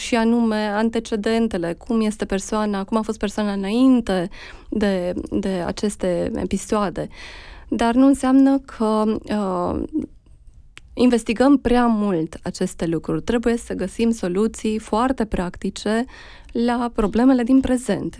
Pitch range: 190-235 Hz